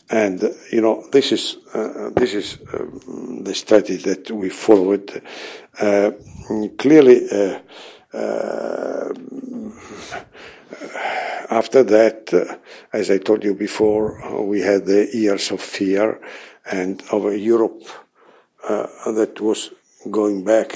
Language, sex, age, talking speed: English, male, 60-79, 120 wpm